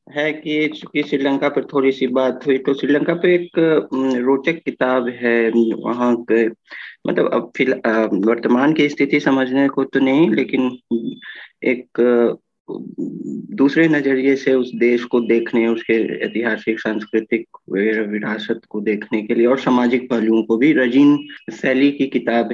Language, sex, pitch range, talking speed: Hindi, male, 115-140 Hz, 145 wpm